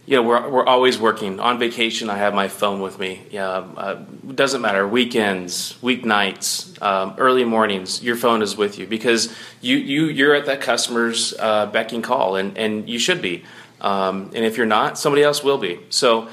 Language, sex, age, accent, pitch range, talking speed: English, male, 30-49, American, 110-135 Hz, 200 wpm